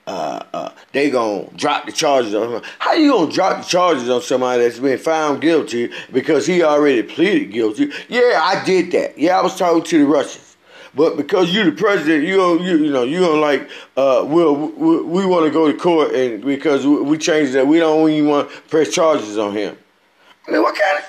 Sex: male